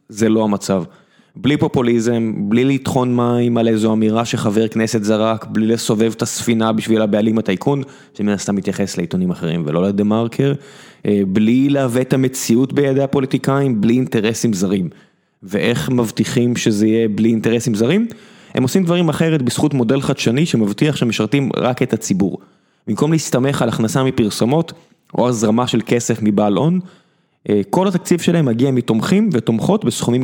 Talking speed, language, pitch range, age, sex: 145 wpm, Hebrew, 110-135 Hz, 20-39, male